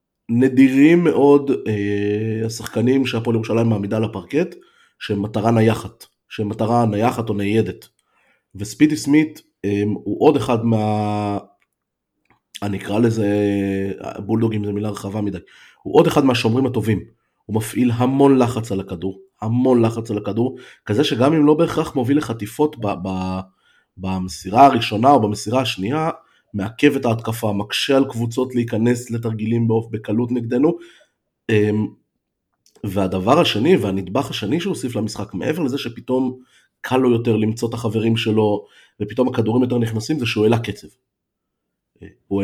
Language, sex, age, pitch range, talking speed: Hebrew, male, 30-49, 105-130 Hz, 135 wpm